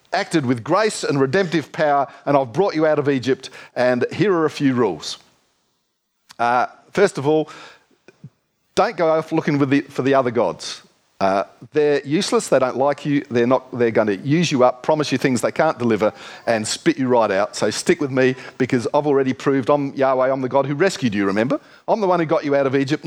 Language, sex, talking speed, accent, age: English, male, 215 wpm, Australian, 50-69